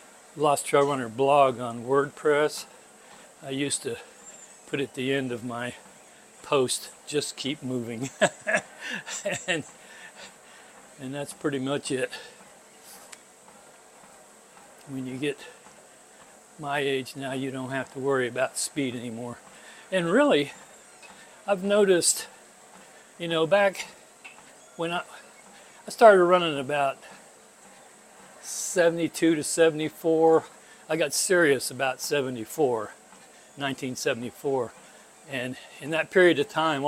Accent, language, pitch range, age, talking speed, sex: American, English, 135-160 Hz, 60-79, 110 wpm, male